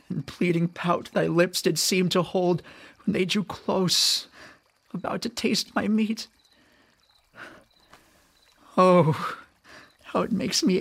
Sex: male